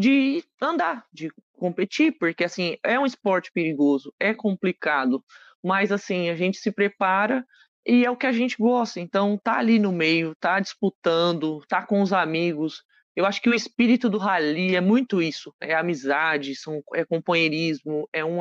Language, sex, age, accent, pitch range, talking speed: Portuguese, male, 20-39, Brazilian, 160-205 Hz, 175 wpm